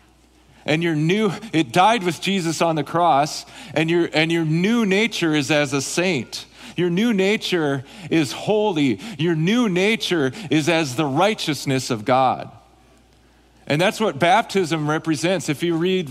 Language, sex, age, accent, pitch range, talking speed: English, male, 40-59, American, 140-180 Hz, 155 wpm